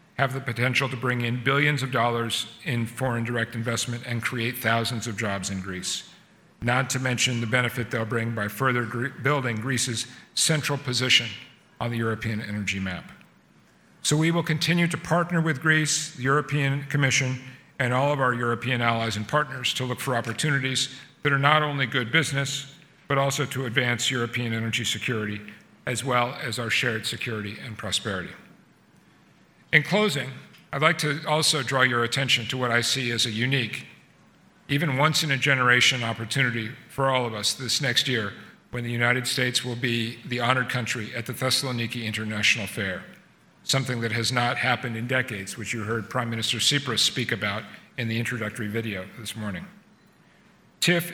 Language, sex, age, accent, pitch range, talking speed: English, male, 50-69, American, 115-140 Hz, 170 wpm